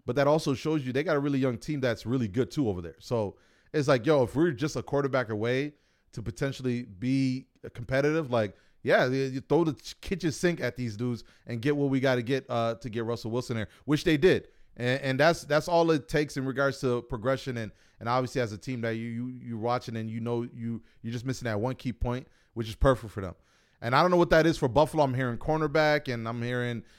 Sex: male